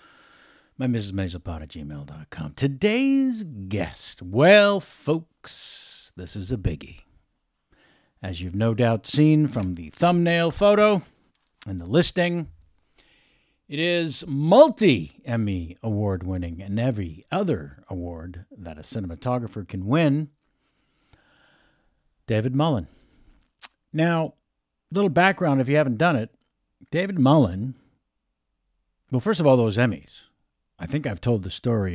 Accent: American